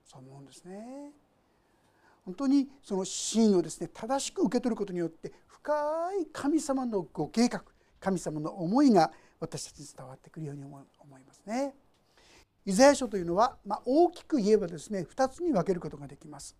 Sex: male